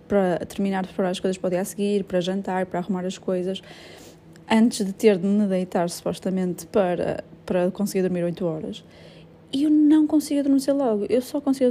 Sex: female